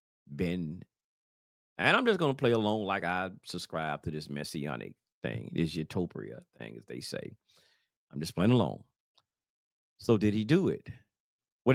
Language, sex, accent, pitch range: English, male, American, 95-145 Hz